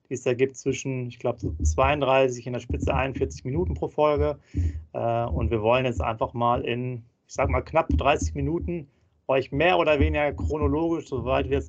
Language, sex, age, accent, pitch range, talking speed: German, male, 30-49, German, 120-135 Hz, 185 wpm